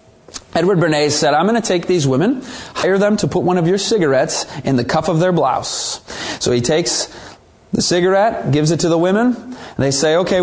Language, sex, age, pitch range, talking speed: English, male, 30-49, 155-245 Hz, 215 wpm